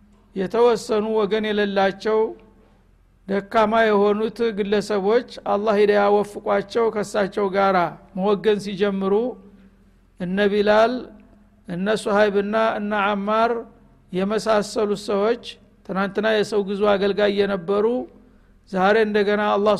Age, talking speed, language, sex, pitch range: 60-79, 95 wpm, Amharic, male, 195-215 Hz